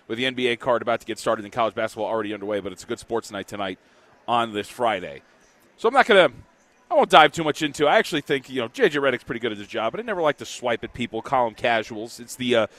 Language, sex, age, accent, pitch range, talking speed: English, male, 30-49, American, 110-140 Hz, 290 wpm